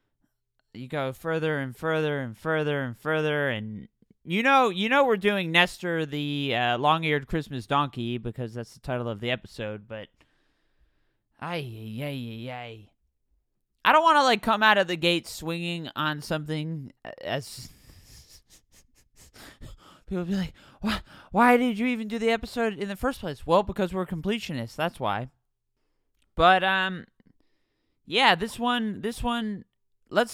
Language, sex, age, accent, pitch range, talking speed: English, male, 20-39, American, 135-195 Hz, 150 wpm